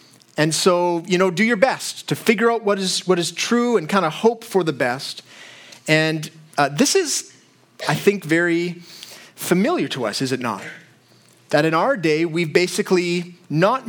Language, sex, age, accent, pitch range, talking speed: English, male, 40-59, American, 150-195 Hz, 180 wpm